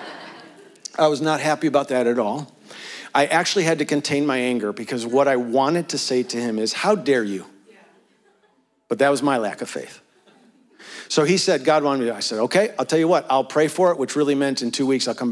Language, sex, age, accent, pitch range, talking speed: English, male, 50-69, American, 135-180 Hz, 235 wpm